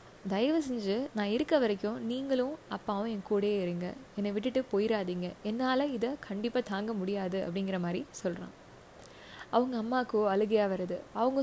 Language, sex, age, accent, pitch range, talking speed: Tamil, female, 20-39, native, 205-255 Hz, 135 wpm